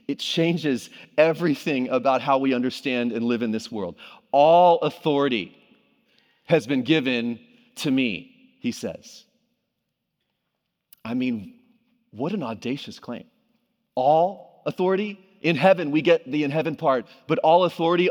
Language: English